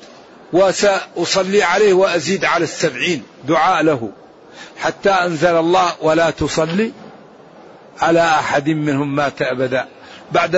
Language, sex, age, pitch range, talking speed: Arabic, male, 50-69, 170-210 Hz, 100 wpm